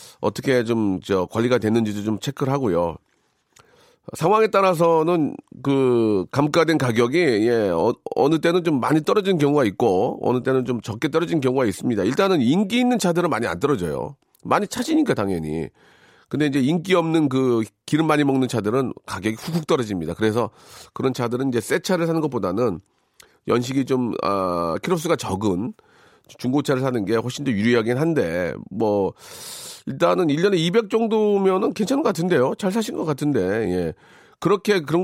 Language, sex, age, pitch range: Korean, male, 40-59, 120-175 Hz